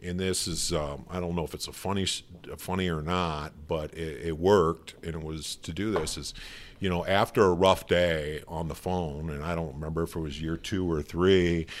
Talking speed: 235 wpm